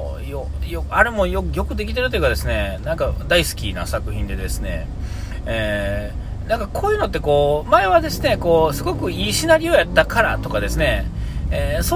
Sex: male